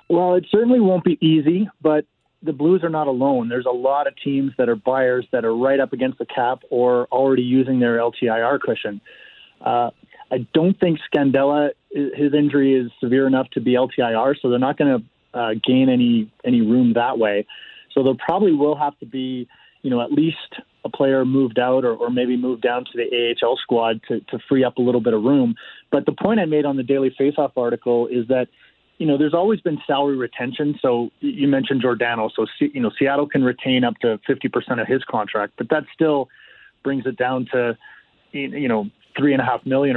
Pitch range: 120-145 Hz